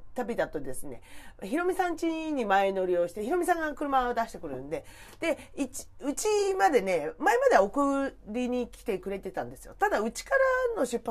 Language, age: Japanese, 40-59